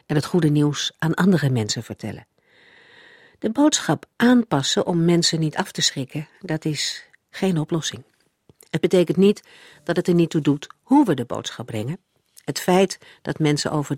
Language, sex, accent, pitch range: Dutch, female, Dutch, 135-185 Hz